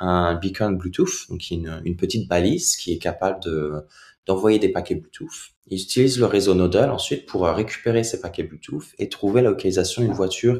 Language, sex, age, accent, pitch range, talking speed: French, male, 20-39, French, 85-110 Hz, 185 wpm